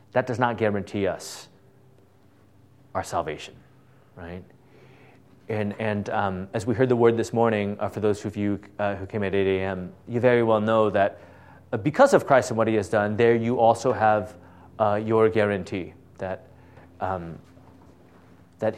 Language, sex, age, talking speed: English, male, 30-49, 170 wpm